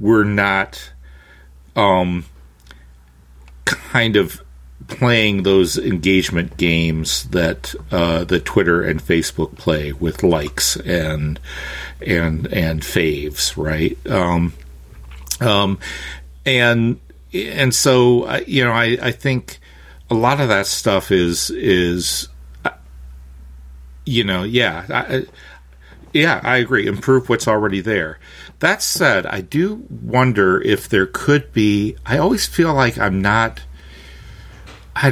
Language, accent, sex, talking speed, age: English, American, male, 115 wpm, 50-69